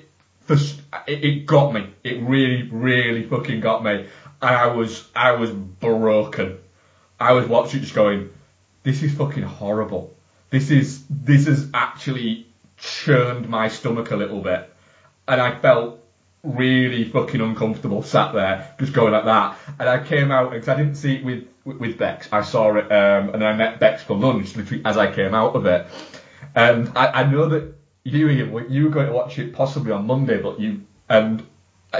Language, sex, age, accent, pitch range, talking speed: English, male, 30-49, British, 110-135 Hz, 175 wpm